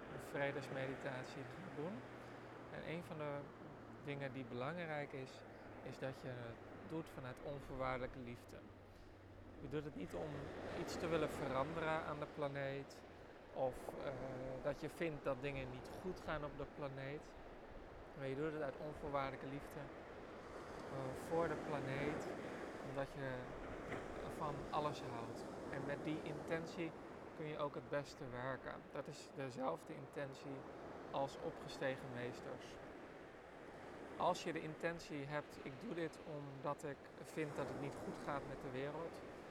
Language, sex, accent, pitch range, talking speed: Dutch, male, Dutch, 130-150 Hz, 145 wpm